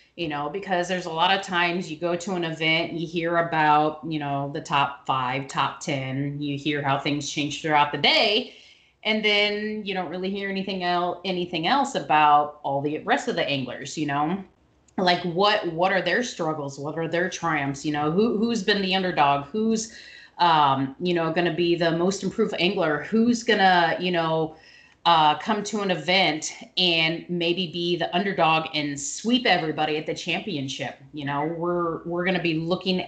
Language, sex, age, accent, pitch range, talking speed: English, female, 30-49, American, 150-190 Hz, 190 wpm